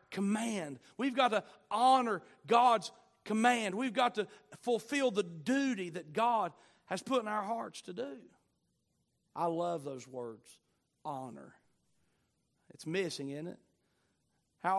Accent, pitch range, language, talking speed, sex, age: American, 165-235 Hz, English, 130 wpm, male, 40-59